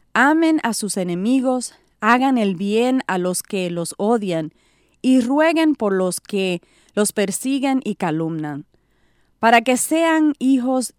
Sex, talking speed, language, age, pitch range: female, 135 wpm, English, 30-49, 190-270 Hz